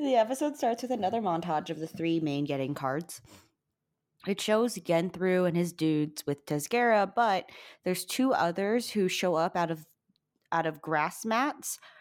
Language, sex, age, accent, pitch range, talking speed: English, female, 20-39, American, 150-185 Hz, 165 wpm